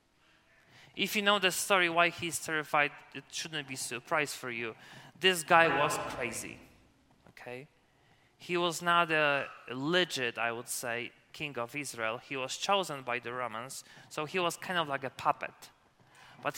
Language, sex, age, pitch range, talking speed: English, male, 20-39, 140-180 Hz, 165 wpm